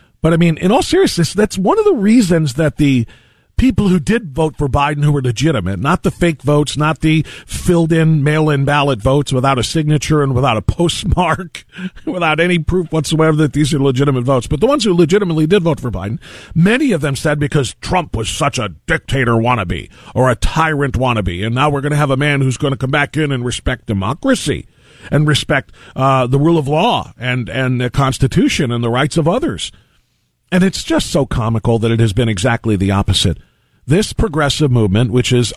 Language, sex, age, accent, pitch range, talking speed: English, male, 40-59, American, 120-160 Hz, 205 wpm